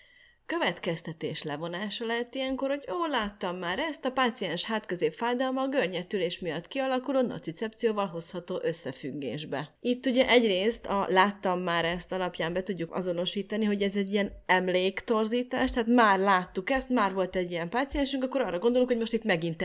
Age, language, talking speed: 30-49, Hungarian, 160 wpm